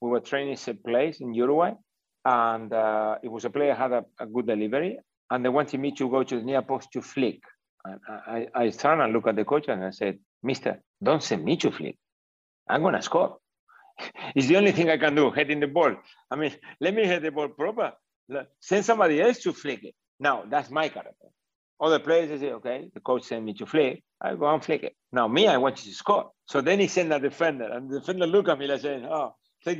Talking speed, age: 245 wpm, 60-79